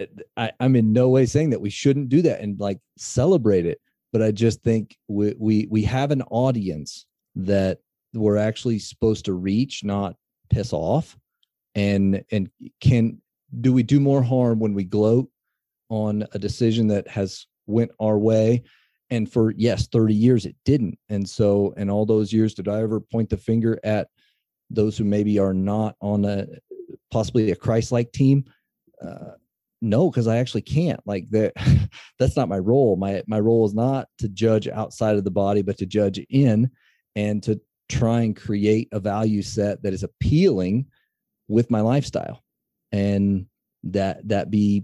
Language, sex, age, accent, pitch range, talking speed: English, male, 40-59, American, 100-120 Hz, 175 wpm